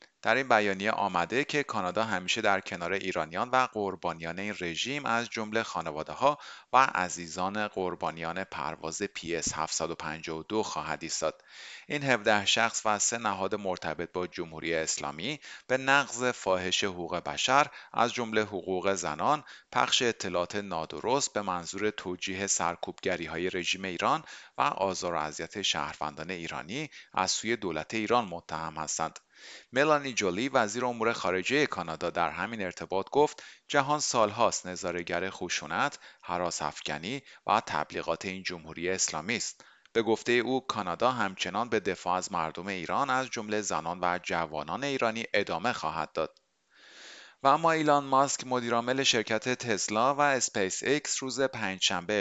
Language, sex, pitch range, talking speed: Persian, male, 85-115 Hz, 135 wpm